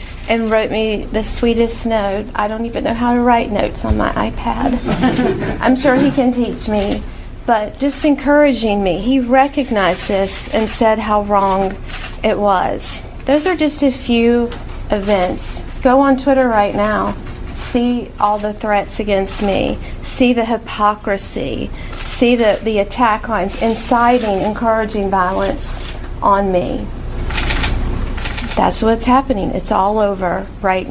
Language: English